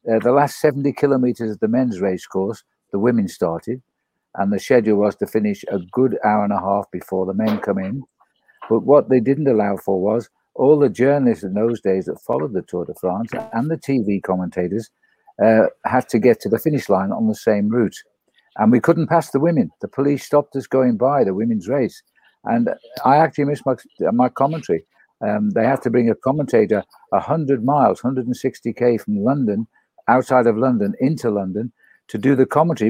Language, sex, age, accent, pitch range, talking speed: English, male, 50-69, British, 115-160 Hz, 200 wpm